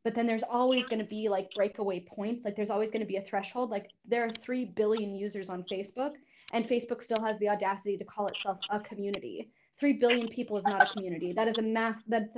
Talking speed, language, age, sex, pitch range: 240 wpm, English, 10-29, female, 195-230 Hz